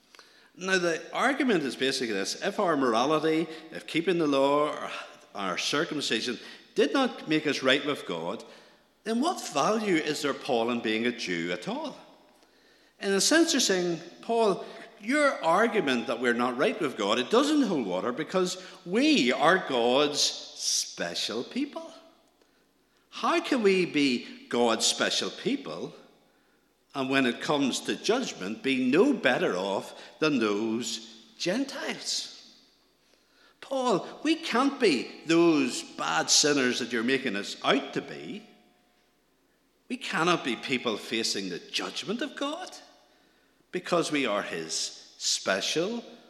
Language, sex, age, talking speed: English, male, 50-69, 140 wpm